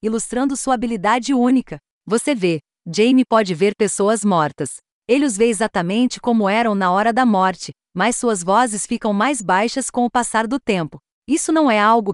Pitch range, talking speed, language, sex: 200-255 Hz, 180 wpm, Portuguese, female